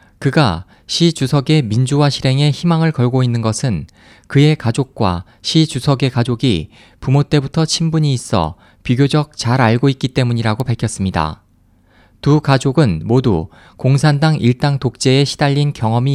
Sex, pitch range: male, 105-145 Hz